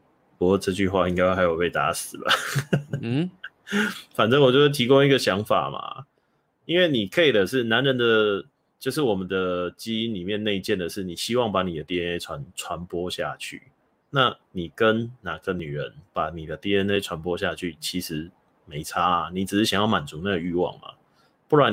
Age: 20-39